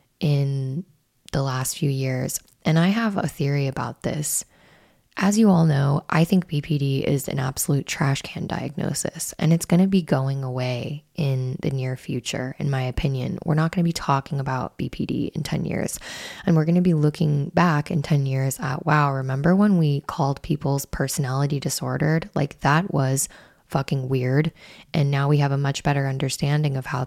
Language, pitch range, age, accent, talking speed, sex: English, 135-160 Hz, 10-29, American, 185 wpm, female